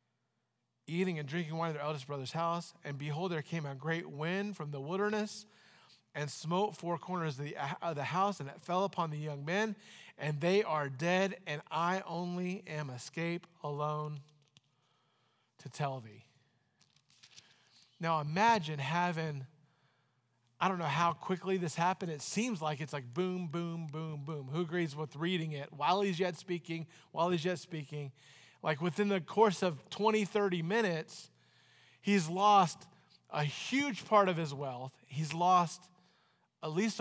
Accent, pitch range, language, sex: American, 140-180 Hz, English, male